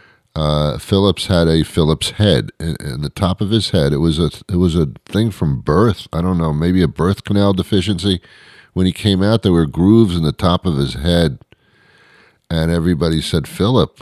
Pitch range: 75-95 Hz